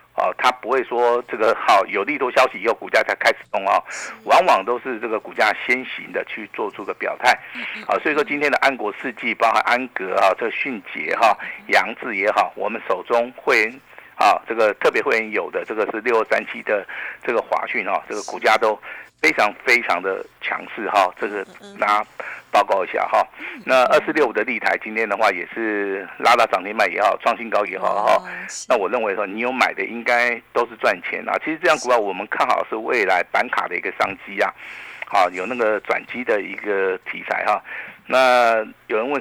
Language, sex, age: Chinese, male, 50-69